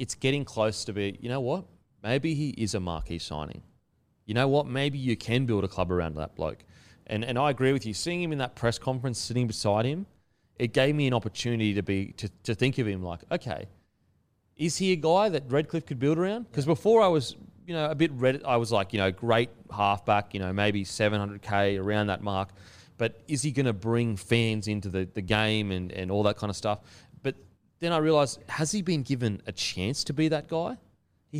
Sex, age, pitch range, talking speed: male, 30-49, 100-135 Hz, 230 wpm